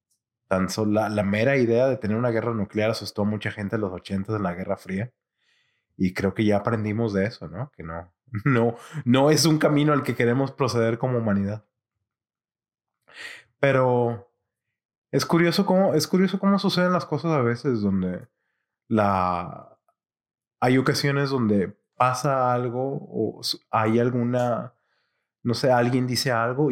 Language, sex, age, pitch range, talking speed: English, male, 30-49, 105-140 Hz, 155 wpm